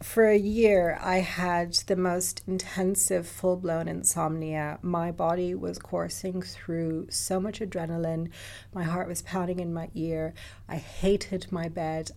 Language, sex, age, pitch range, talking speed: English, female, 30-49, 150-175 Hz, 145 wpm